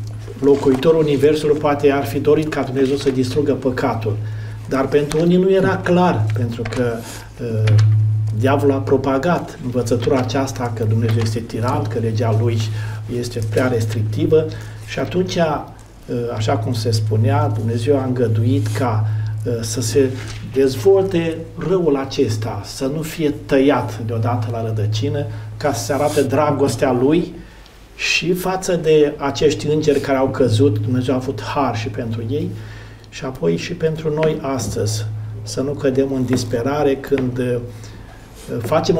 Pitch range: 110-145 Hz